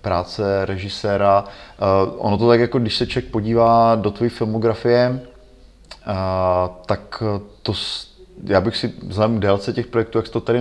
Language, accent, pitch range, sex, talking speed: Czech, native, 100-120 Hz, male, 155 wpm